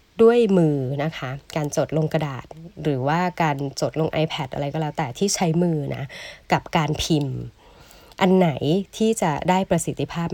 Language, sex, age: Thai, female, 20-39